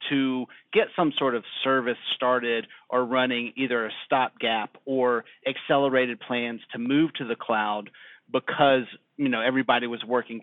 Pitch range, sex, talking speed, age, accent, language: 120-145 Hz, male, 150 wpm, 40-59, American, English